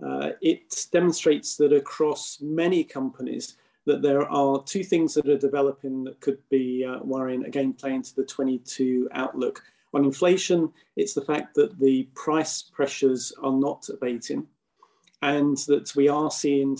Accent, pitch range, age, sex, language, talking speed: British, 130-150 Hz, 40-59, male, English, 155 wpm